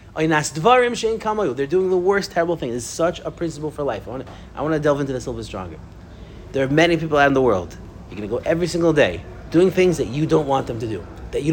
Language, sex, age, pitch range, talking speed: English, male, 30-49, 110-185 Hz, 265 wpm